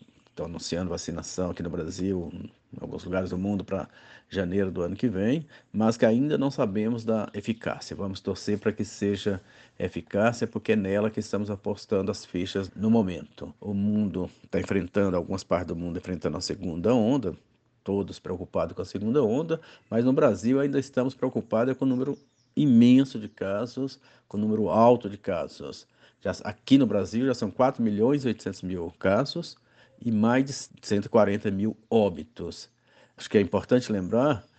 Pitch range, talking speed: 95-125 Hz, 170 wpm